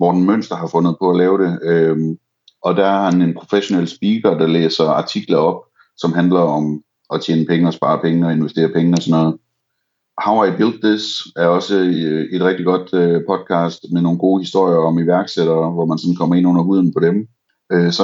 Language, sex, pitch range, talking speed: Danish, male, 85-95 Hz, 200 wpm